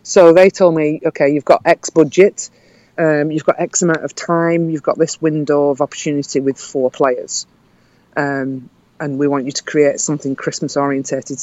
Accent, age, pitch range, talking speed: British, 40-59, 140-165 Hz, 180 wpm